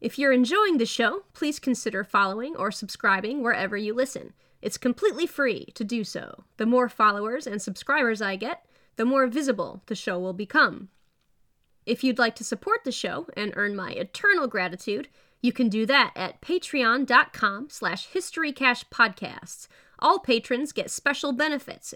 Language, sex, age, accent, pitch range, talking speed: English, female, 20-39, American, 210-275 Hz, 155 wpm